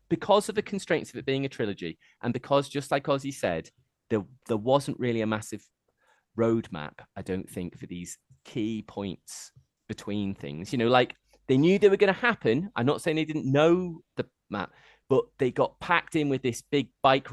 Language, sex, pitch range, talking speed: English, male, 100-140 Hz, 195 wpm